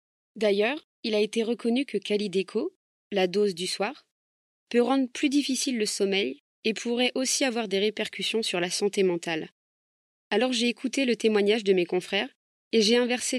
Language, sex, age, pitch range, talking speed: French, female, 20-39, 200-245 Hz, 170 wpm